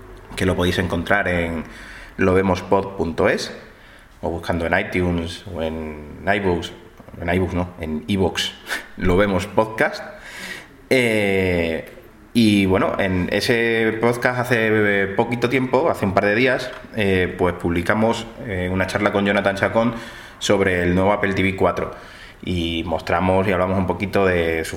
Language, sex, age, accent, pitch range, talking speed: Spanish, male, 20-39, Spanish, 90-110 Hz, 140 wpm